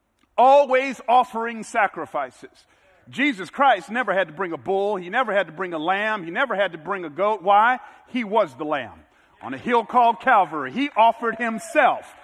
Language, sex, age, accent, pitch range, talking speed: English, male, 50-69, American, 175-260 Hz, 185 wpm